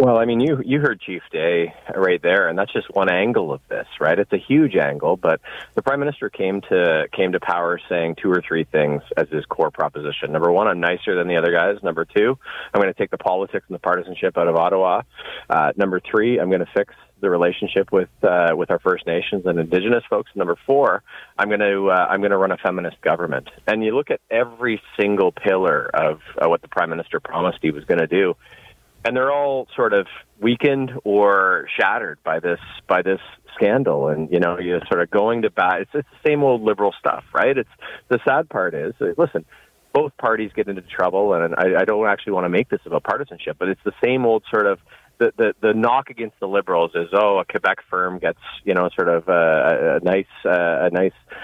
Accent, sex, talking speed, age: American, male, 225 wpm, 30-49